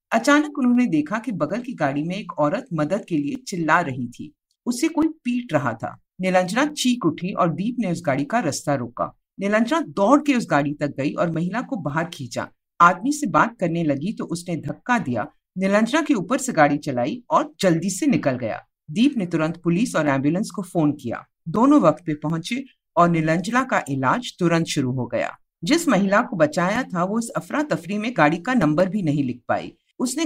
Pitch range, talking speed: 150-245 Hz, 205 wpm